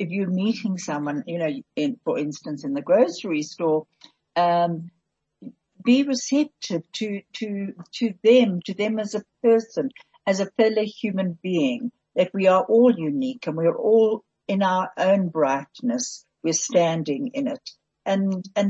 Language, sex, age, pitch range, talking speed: English, female, 60-79, 170-225 Hz, 155 wpm